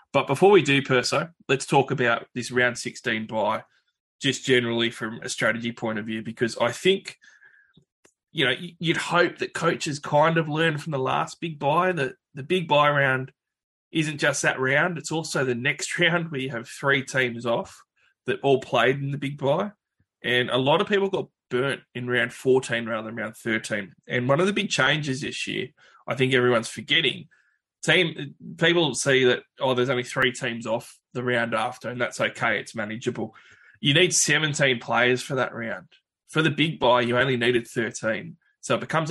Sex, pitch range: male, 120-150 Hz